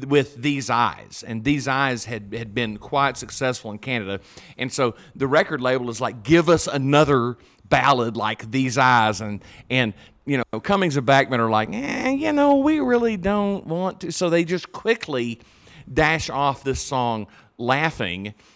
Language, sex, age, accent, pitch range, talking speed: English, male, 40-59, American, 110-145 Hz, 170 wpm